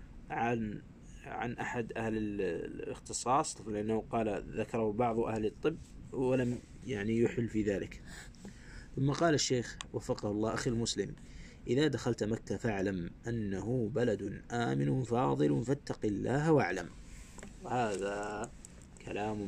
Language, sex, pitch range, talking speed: Arabic, male, 90-125 Hz, 110 wpm